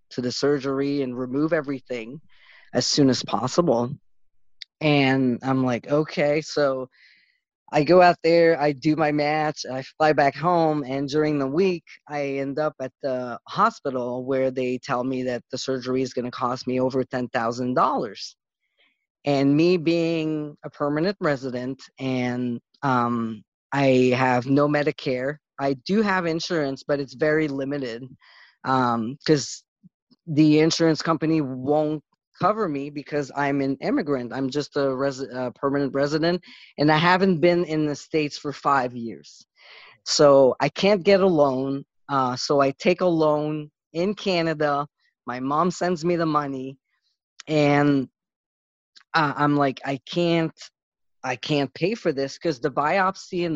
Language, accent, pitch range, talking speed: English, American, 130-160 Hz, 150 wpm